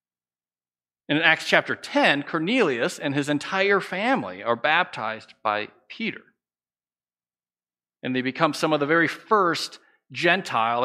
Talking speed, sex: 120 wpm, male